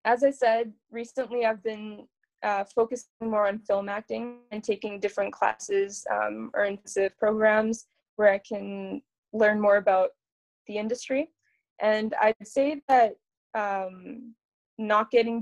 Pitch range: 200-230 Hz